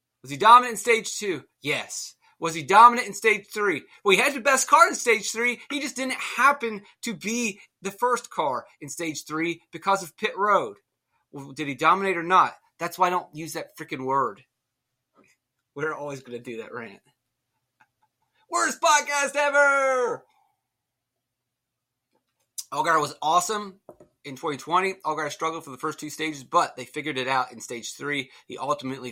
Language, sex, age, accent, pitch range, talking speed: English, male, 30-49, American, 140-220 Hz, 175 wpm